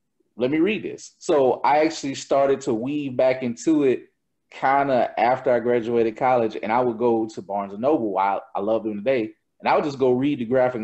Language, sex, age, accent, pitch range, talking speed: English, male, 30-49, American, 115-150 Hz, 220 wpm